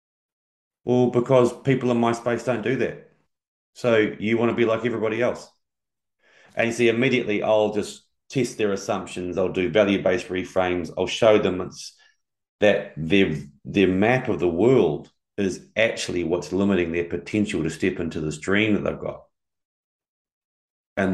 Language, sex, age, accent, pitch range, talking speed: English, male, 30-49, Australian, 90-115 Hz, 155 wpm